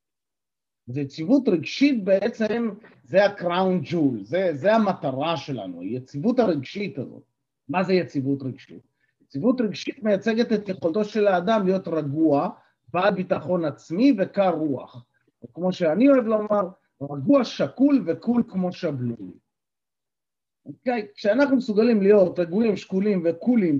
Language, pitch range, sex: Hebrew, 160-230 Hz, male